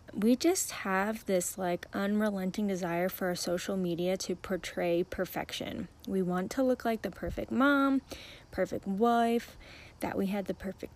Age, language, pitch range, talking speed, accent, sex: 20-39, English, 185-245 Hz, 160 wpm, American, female